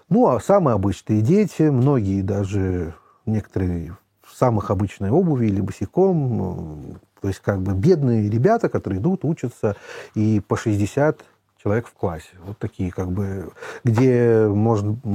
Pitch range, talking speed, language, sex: 100-130 Hz, 140 wpm, Russian, male